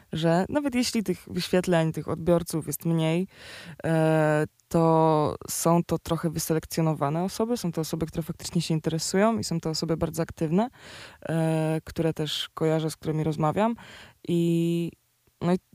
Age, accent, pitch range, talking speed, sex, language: 20-39, native, 160-180 Hz, 135 wpm, female, Polish